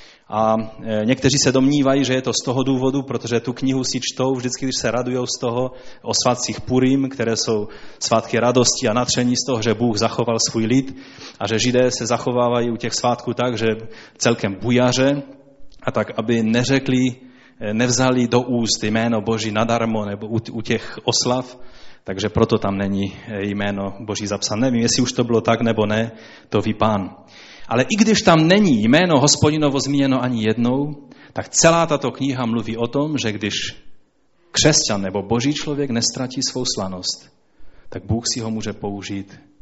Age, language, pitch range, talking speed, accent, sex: 30-49, Czech, 110-135 Hz, 170 wpm, native, male